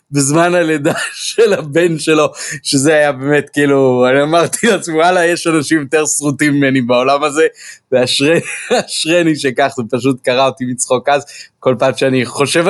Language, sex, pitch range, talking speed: Hebrew, male, 125-160 Hz, 150 wpm